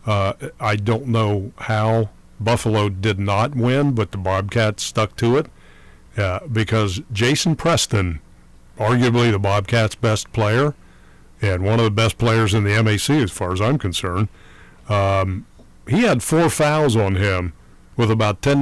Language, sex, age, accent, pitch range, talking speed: English, male, 50-69, American, 95-120 Hz, 155 wpm